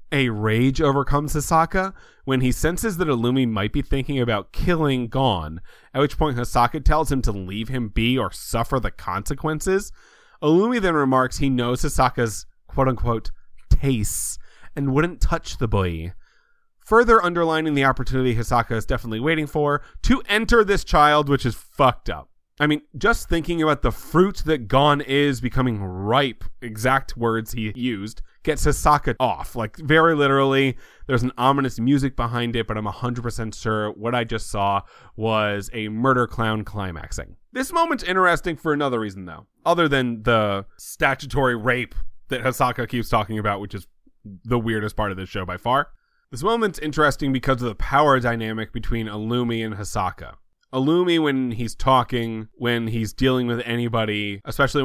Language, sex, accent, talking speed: English, male, American, 165 wpm